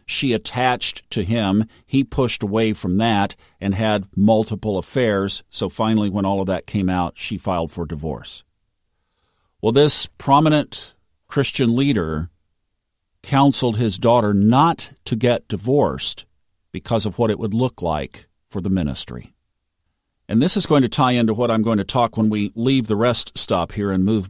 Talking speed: 170 wpm